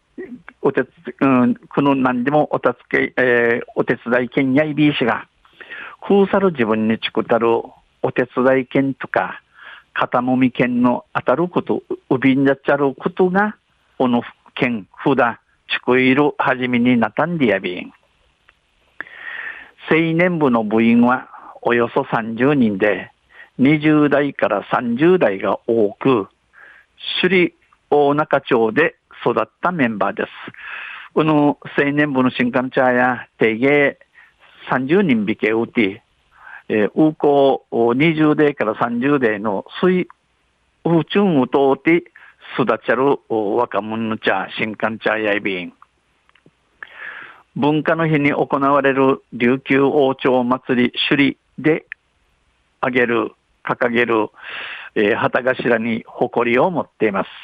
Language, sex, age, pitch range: Japanese, male, 50-69, 120-150 Hz